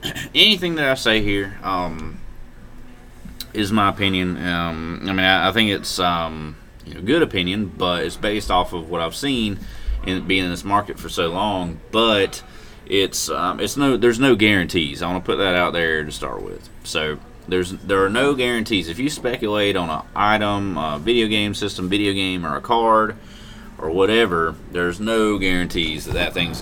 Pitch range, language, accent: 85-105 Hz, English, American